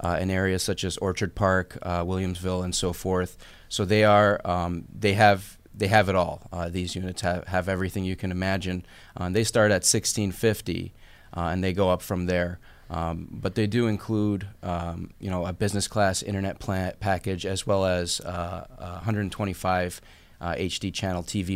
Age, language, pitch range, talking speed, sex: 30-49, English, 90-100 Hz, 180 wpm, male